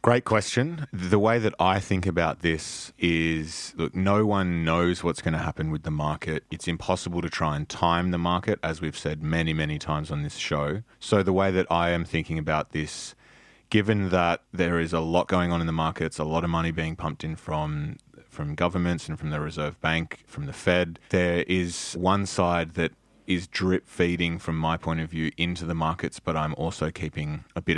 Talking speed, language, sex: 210 wpm, English, male